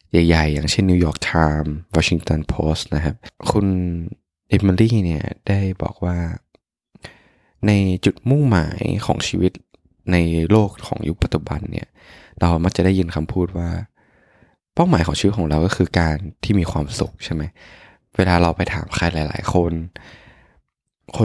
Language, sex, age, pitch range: Thai, male, 20-39, 85-105 Hz